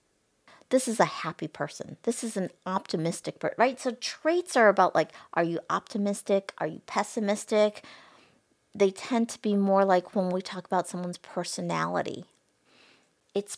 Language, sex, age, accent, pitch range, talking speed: English, female, 50-69, American, 185-235 Hz, 155 wpm